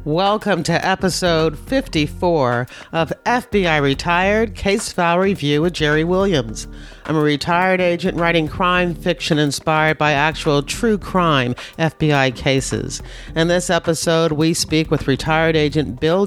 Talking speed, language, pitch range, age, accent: 135 wpm, English, 145-180 Hz, 50-69, American